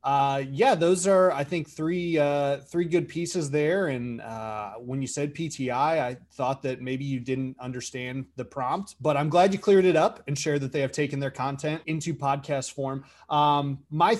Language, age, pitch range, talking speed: English, 30-49, 125-155 Hz, 200 wpm